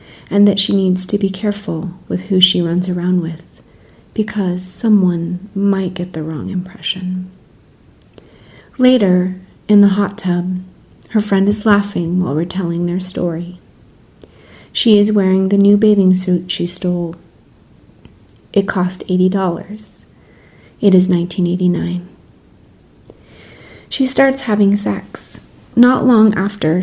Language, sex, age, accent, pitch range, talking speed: English, female, 30-49, American, 180-205 Hz, 125 wpm